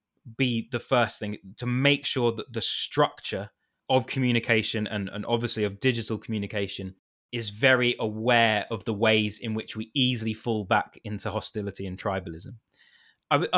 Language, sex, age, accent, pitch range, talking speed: English, male, 20-39, British, 115-145 Hz, 155 wpm